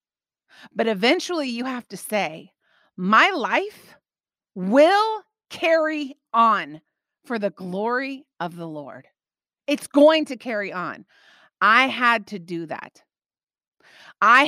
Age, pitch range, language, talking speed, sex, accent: 40-59, 190-285 Hz, English, 115 wpm, female, American